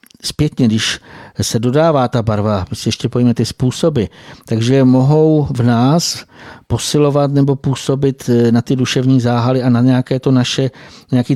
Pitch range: 115-135 Hz